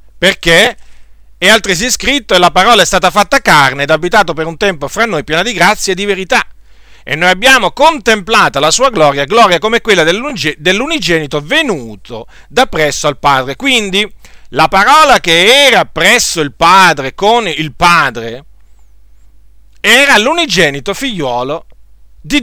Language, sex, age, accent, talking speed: Italian, male, 50-69, native, 150 wpm